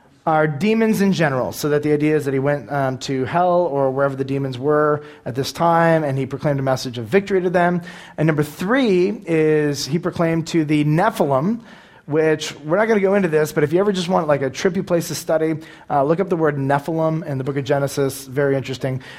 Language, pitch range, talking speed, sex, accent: English, 140-180 Hz, 230 wpm, male, American